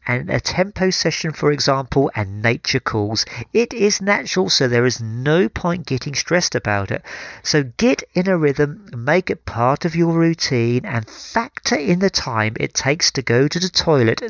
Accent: British